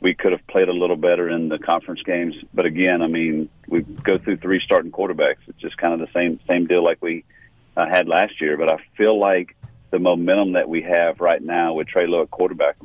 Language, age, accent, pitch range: English, 40-59, American, 80-105 Hz